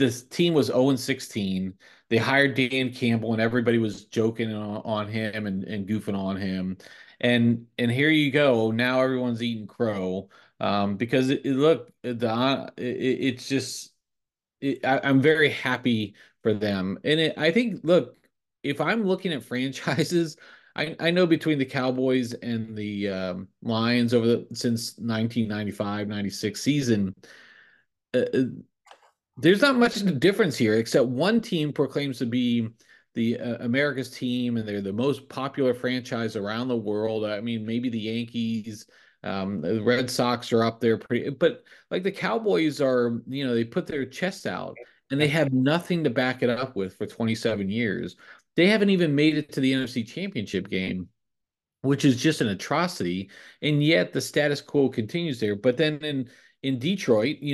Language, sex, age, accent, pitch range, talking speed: English, male, 30-49, American, 110-145 Hz, 170 wpm